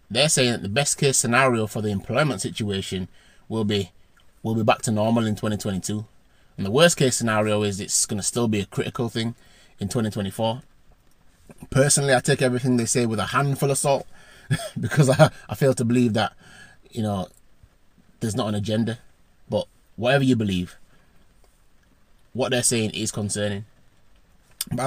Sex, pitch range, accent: male, 105-130 Hz, British